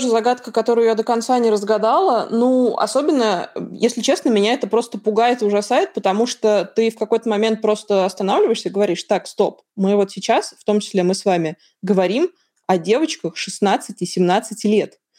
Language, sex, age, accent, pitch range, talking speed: Russian, female, 20-39, native, 195-235 Hz, 180 wpm